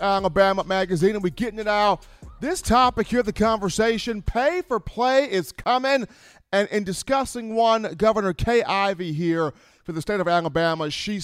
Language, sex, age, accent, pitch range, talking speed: English, male, 40-59, American, 160-200 Hz, 165 wpm